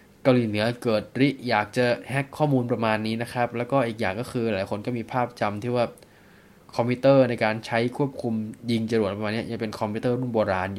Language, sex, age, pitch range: Thai, male, 20-39, 110-135 Hz